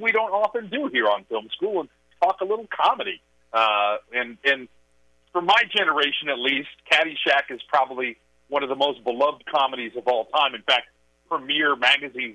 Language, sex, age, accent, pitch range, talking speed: English, male, 40-59, American, 100-150 Hz, 180 wpm